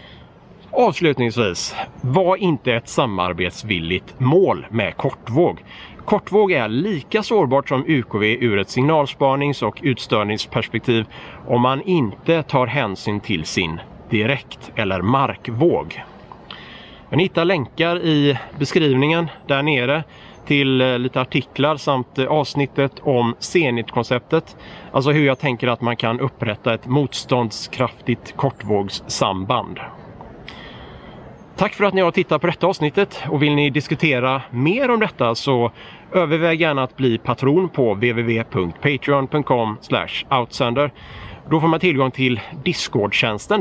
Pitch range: 120-155 Hz